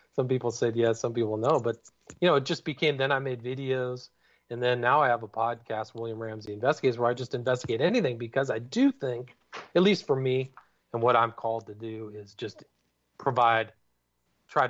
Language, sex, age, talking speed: English, male, 40-59, 205 wpm